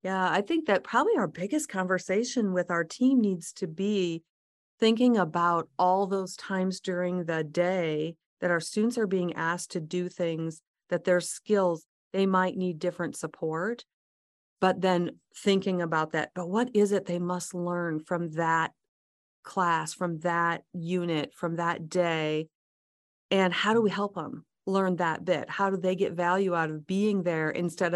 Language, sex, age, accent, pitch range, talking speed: English, female, 40-59, American, 160-190 Hz, 170 wpm